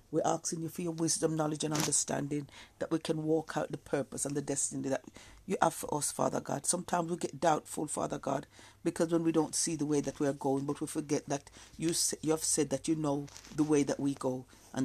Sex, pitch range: female, 135-160 Hz